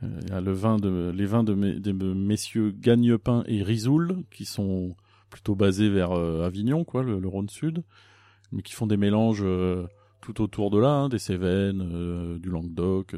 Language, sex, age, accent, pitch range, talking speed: French, male, 30-49, French, 100-115 Hz, 195 wpm